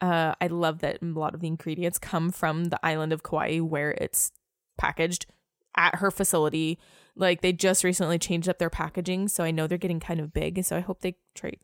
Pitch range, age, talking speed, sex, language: 165-190 Hz, 20-39, 210 wpm, female, English